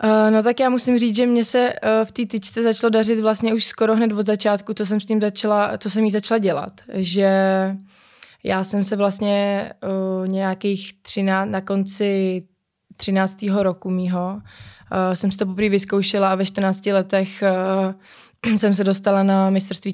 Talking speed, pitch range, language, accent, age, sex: 185 wpm, 190-210 Hz, Czech, native, 20-39, female